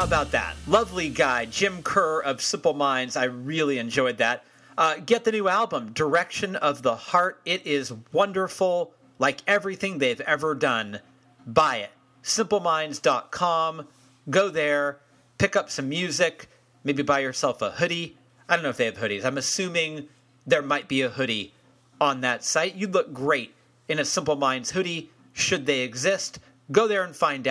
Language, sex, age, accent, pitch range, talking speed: English, male, 40-59, American, 130-180 Hz, 170 wpm